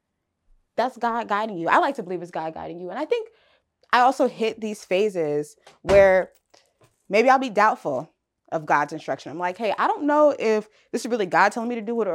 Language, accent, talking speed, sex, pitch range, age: English, American, 220 wpm, female, 170-240 Hz, 20-39